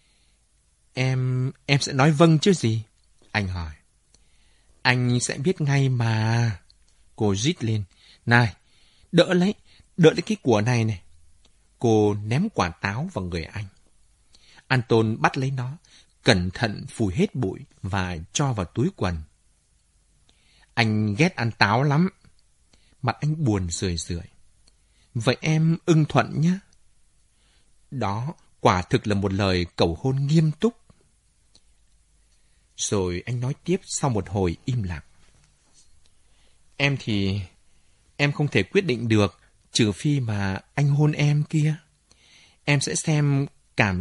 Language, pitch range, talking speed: Vietnamese, 90-140 Hz, 135 wpm